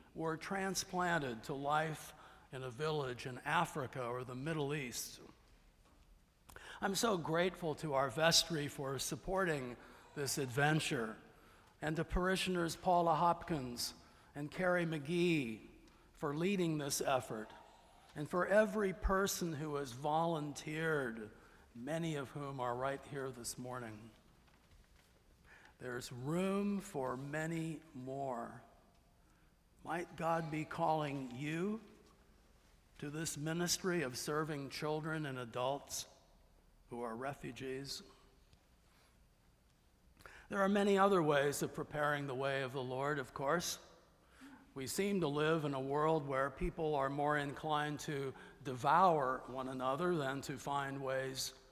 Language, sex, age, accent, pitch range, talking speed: English, male, 50-69, American, 130-165 Hz, 120 wpm